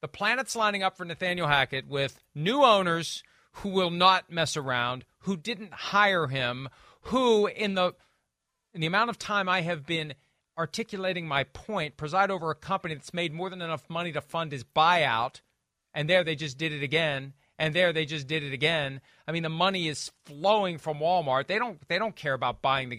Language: English